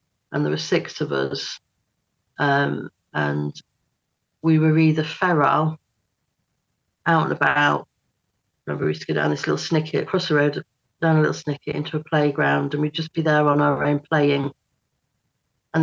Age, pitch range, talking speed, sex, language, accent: 40-59, 130-155 Hz, 165 wpm, female, English, British